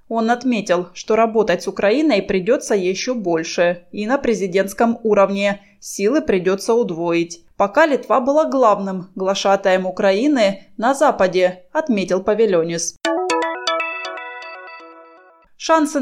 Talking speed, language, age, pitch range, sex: 100 wpm, Russian, 20-39, 190-255 Hz, female